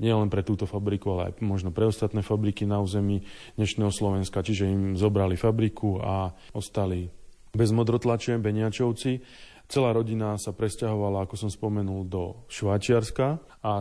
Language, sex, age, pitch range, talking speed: Slovak, male, 20-39, 100-115 Hz, 145 wpm